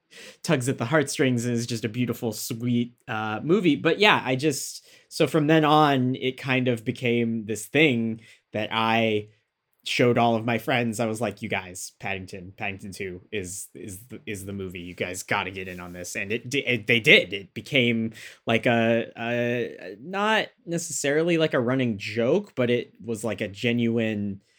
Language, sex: English, male